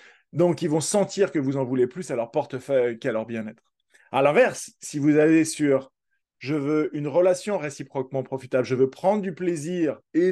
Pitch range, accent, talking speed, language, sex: 130-175 Hz, French, 200 wpm, French, male